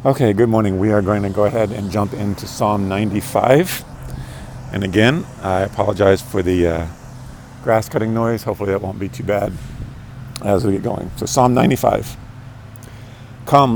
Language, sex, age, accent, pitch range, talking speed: English, male, 50-69, American, 100-125 Hz, 165 wpm